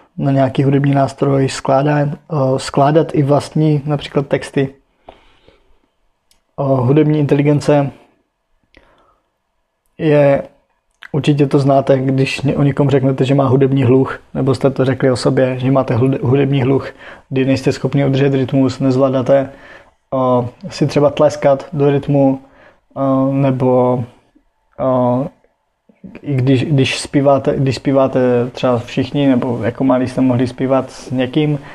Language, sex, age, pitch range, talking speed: Czech, male, 20-39, 125-140 Hz, 125 wpm